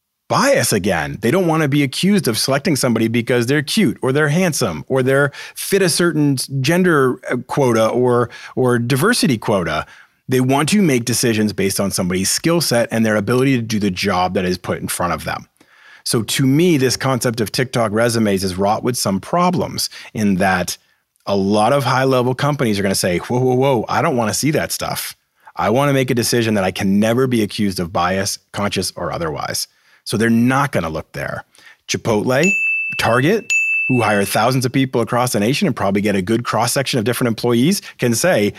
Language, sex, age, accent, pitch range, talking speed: English, male, 30-49, American, 105-145 Hz, 205 wpm